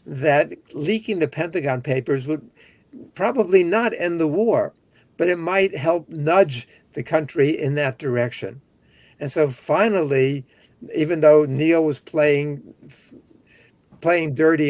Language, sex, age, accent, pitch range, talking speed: English, male, 60-79, American, 125-155 Hz, 125 wpm